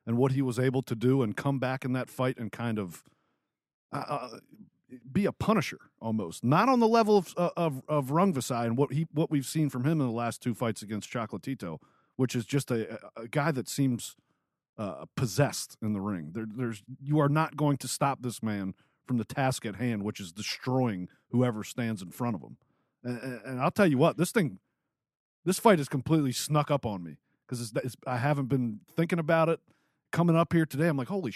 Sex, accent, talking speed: male, American, 215 wpm